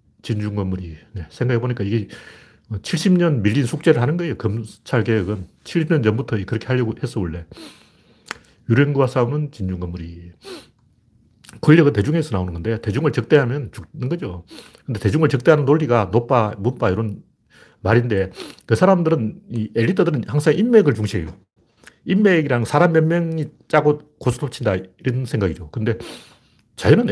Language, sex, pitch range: Korean, male, 105-145 Hz